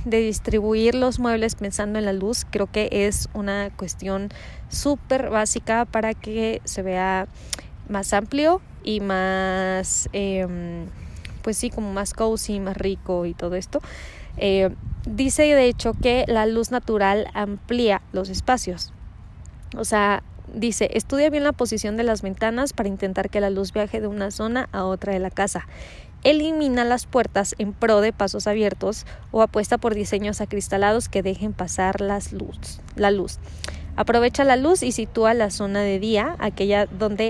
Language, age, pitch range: Spanish, 20-39, 195-245 Hz